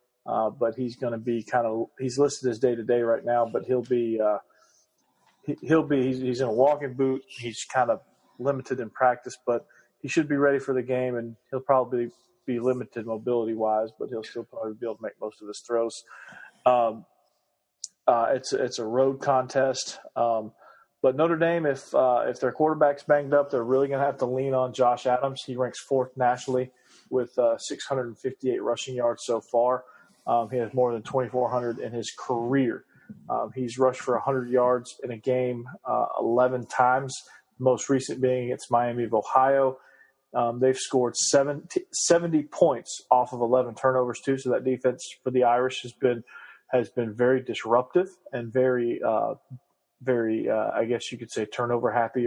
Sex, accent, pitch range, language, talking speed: male, American, 120-135 Hz, English, 185 wpm